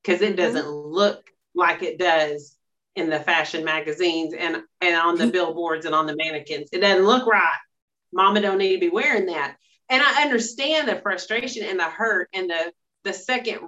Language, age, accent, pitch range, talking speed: English, 40-59, American, 175-230 Hz, 190 wpm